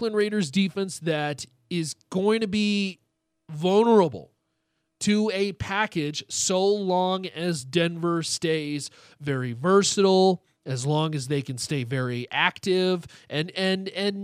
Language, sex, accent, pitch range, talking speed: English, male, American, 150-205 Hz, 120 wpm